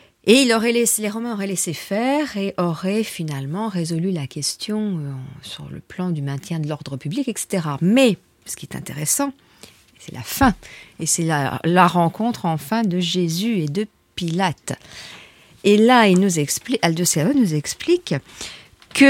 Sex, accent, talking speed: female, French, 160 wpm